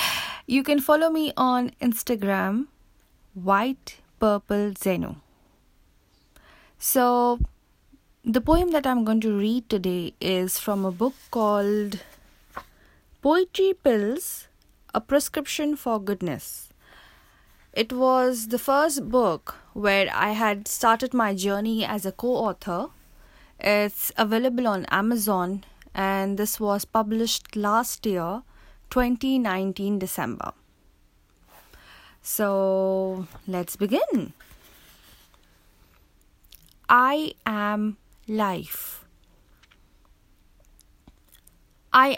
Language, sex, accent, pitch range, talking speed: English, female, Indian, 190-250 Hz, 90 wpm